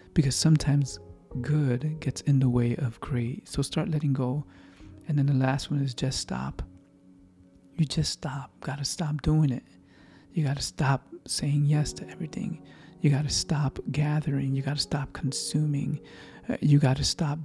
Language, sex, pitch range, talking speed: English, male, 125-150 Hz, 175 wpm